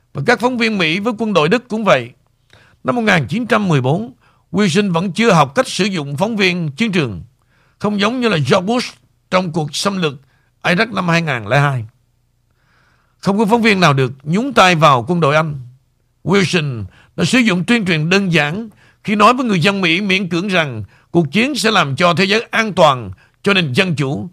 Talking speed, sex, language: 190 wpm, male, Vietnamese